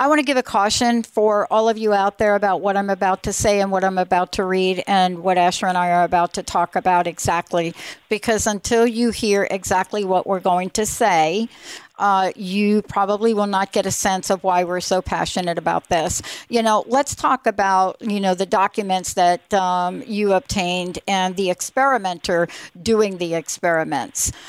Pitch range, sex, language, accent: 185-230 Hz, female, English, American